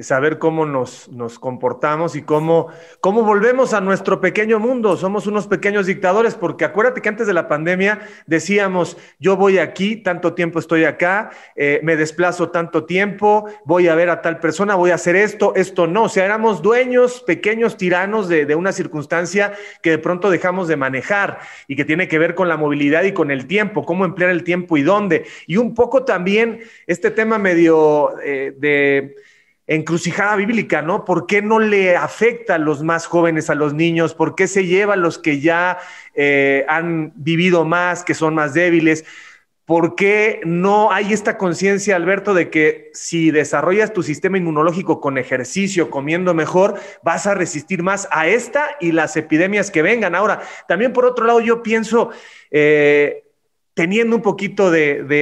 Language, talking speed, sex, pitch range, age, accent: Spanish, 180 wpm, male, 160-205 Hz, 30-49, Mexican